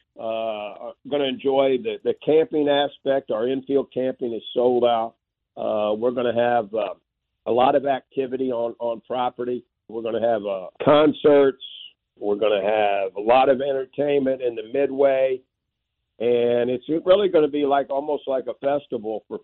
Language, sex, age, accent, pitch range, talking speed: English, male, 50-69, American, 120-135 Hz, 160 wpm